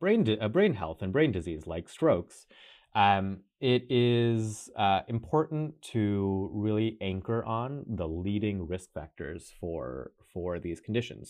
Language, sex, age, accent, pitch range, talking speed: English, male, 30-49, American, 90-110 Hz, 140 wpm